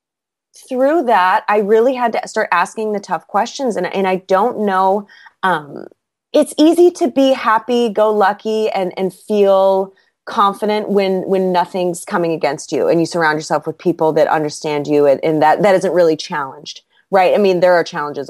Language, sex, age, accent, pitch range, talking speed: English, female, 30-49, American, 165-210 Hz, 185 wpm